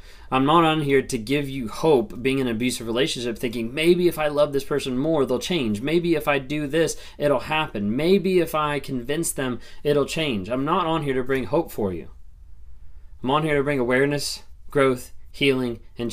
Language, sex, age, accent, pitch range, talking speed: English, male, 20-39, American, 85-130 Hz, 205 wpm